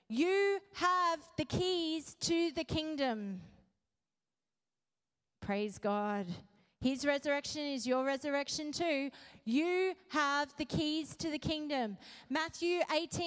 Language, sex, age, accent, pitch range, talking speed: English, female, 30-49, Australian, 240-320 Hz, 105 wpm